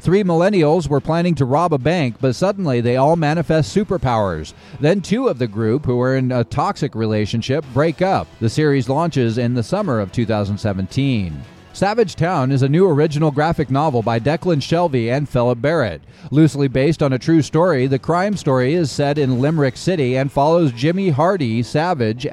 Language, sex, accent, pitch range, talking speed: English, male, American, 120-160 Hz, 185 wpm